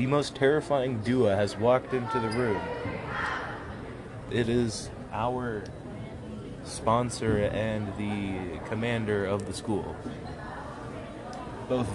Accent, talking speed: American, 100 wpm